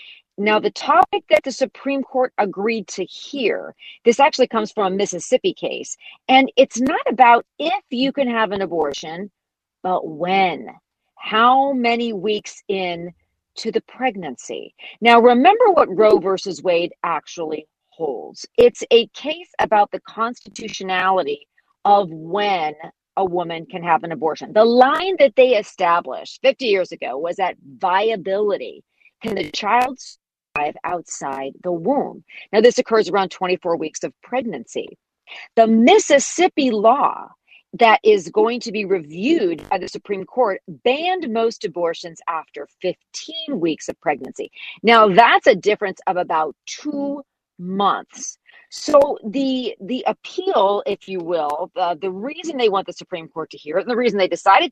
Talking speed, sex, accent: 150 wpm, female, American